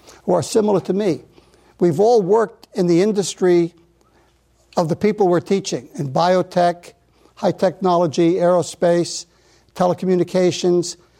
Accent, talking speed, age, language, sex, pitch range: American, 120 wpm, 60-79, English, male, 165-195 Hz